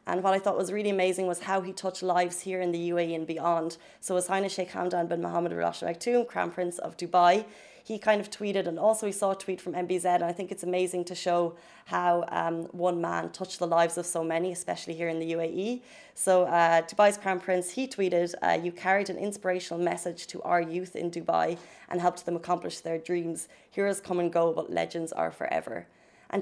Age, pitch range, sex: 20-39, 170-190 Hz, female